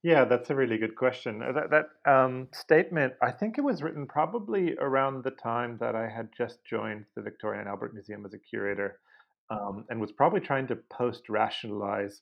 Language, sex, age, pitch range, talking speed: English, male, 30-49, 105-135 Hz, 190 wpm